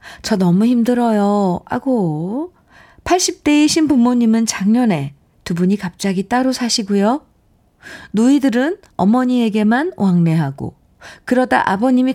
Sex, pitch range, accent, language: female, 165-230 Hz, native, Korean